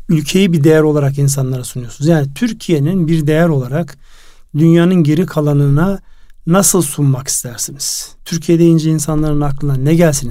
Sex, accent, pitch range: male, native, 135-160 Hz